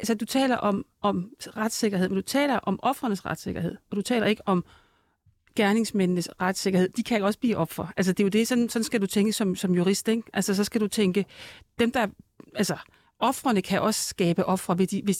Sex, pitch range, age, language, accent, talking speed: female, 195-245 Hz, 40-59, Danish, native, 215 wpm